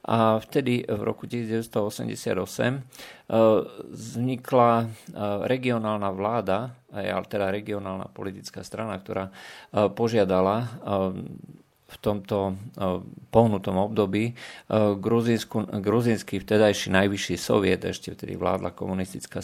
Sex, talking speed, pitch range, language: male, 85 wpm, 95-115 Hz, Slovak